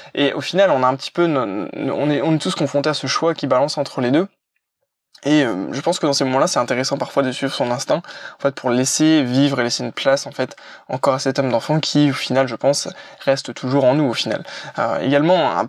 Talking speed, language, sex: 240 wpm, French, male